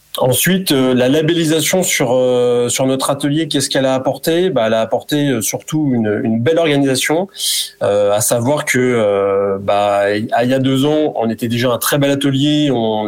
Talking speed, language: 180 wpm, French